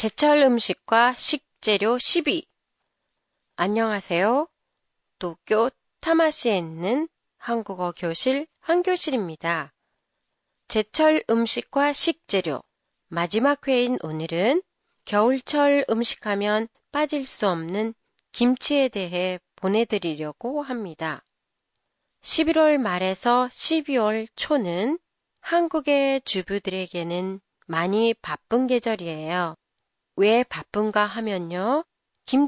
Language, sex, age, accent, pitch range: Japanese, female, 30-49, Korean, 190-270 Hz